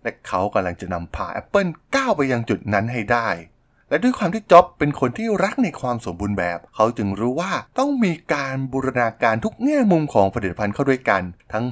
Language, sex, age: Thai, male, 20-39